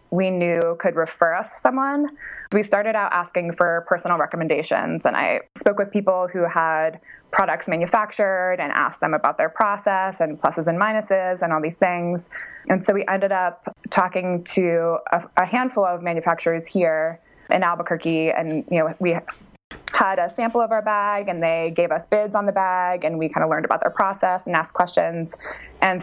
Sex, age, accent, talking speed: female, 20-39, American, 190 wpm